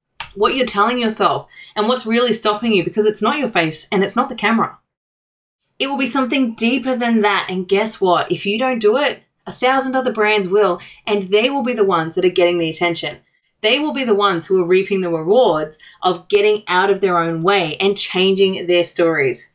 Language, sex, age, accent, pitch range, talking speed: English, female, 20-39, Australian, 190-240 Hz, 220 wpm